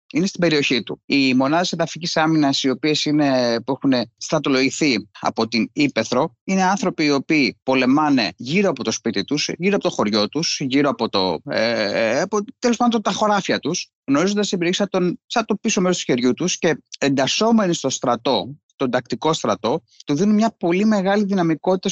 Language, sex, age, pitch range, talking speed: Greek, male, 30-49, 130-200 Hz, 155 wpm